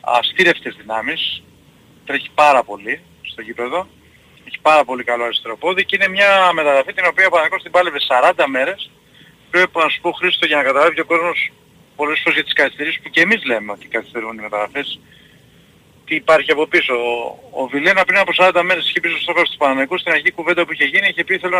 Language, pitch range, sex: Greek, 130-175 Hz, male